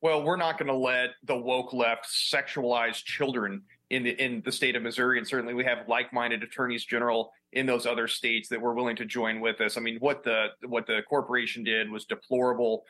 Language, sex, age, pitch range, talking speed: English, male, 30-49, 115-135 Hz, 210 wpm